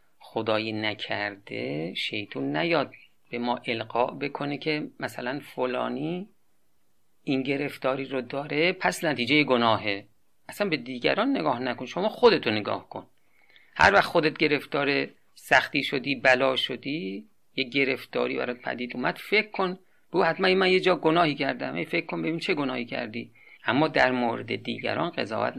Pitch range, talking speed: 125-160 Hz, 140 wpm